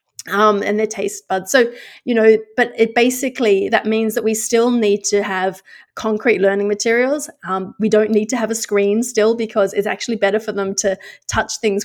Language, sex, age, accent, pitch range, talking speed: English, female, 30-49, Australian, 200-230 Hz, 205 wpm